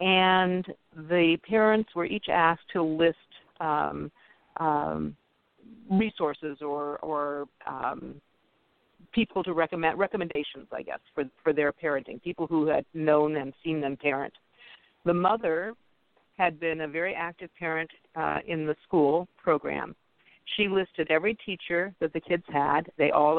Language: English